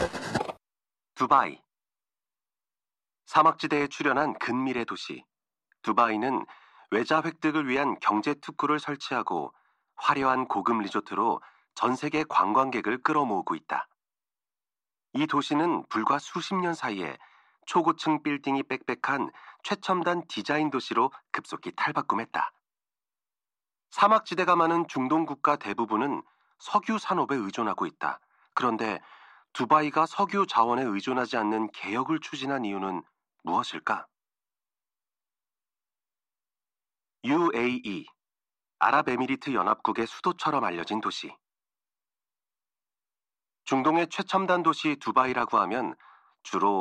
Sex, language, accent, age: male, Korean, native, 40-59